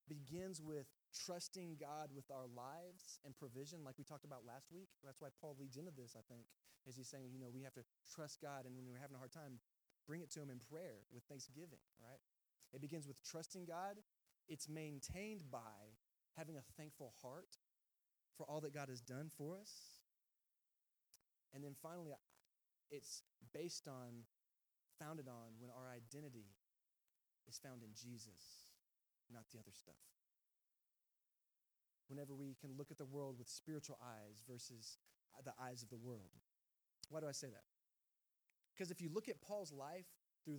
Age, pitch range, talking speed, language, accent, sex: 20-39, 125-175 Hz, 175 wpm, English, American, male